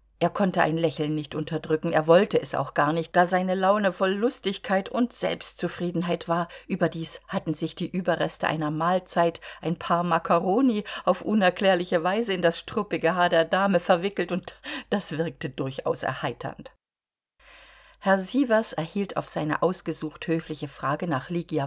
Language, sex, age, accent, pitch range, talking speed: German, female, 50-69, German, 160-190 Hz, 150 wpm